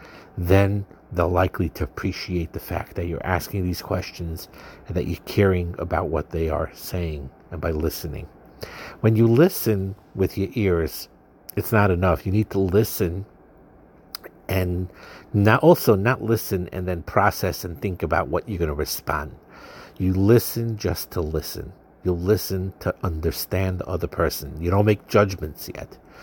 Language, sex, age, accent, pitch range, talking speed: English, male, 60-79, American, 85-105 Hz, 160 wpm